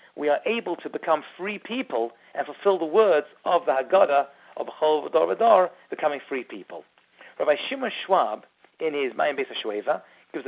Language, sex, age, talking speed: English, male, 40-59, 150 wpm